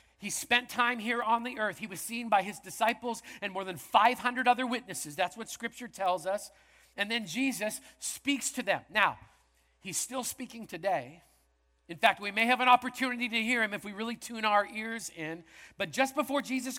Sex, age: male, 50-69